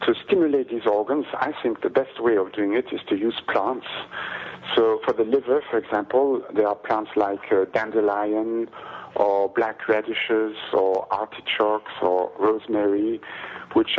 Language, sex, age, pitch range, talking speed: English, male, 50-69, 105-145 Hz, 155 wpm